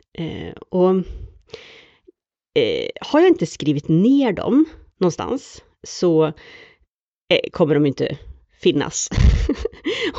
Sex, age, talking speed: female, 40-59, 75 wpm